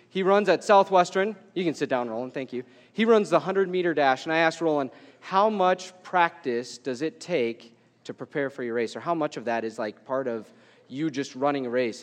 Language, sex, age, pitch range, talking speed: English, male, 30-49, 125-175 Hz, 225 wpm